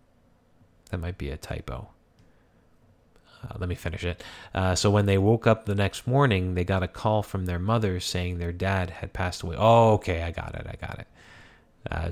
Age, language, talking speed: 30-49, English, 205 wpm